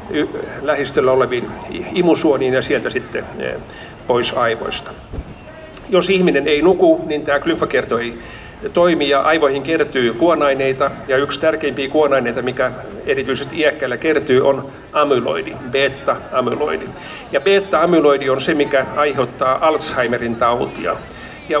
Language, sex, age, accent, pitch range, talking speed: Finnish, male, 50-69, native, 135-160 Hz, 110 wpm